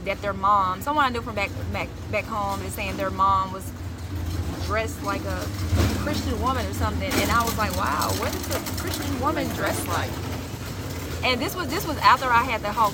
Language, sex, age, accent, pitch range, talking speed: English, female, 20-39, American, 185-230 Hz, 210 wpm